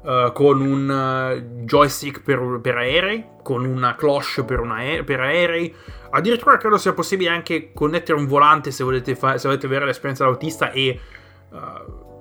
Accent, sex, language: native, male, Italian